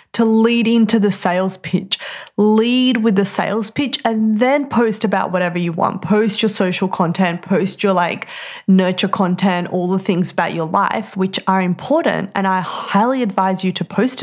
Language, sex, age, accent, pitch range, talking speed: English, female, 20-39, Australian, 180-215 Hz, 180 wpm